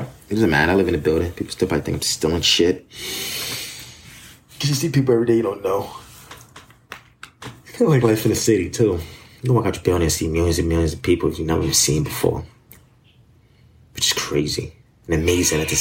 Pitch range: 85-120 Hz